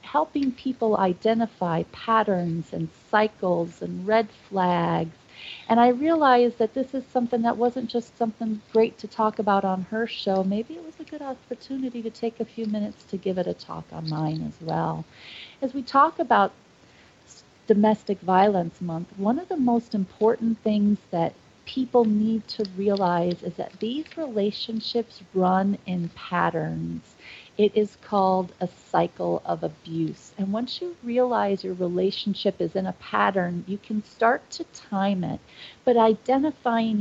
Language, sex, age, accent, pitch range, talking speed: English, female, 40-59, American, 180-230 Hz, 160 wpm